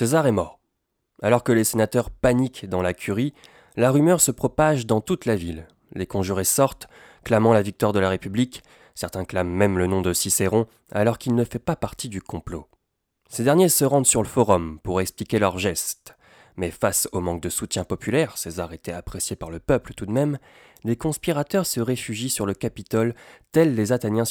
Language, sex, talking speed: French, male, 195 wpm